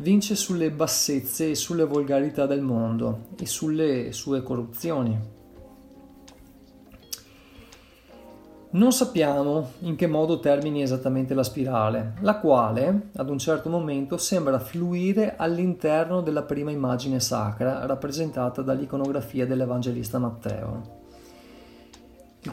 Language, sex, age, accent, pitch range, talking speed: Italian, male, 40-59, native, 125-165 Hz, 105 wpm